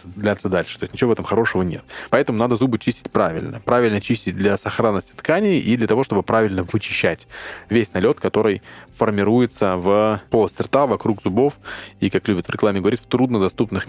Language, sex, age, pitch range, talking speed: Russian, male, 20-39, 95-115 Hz, 180 wpm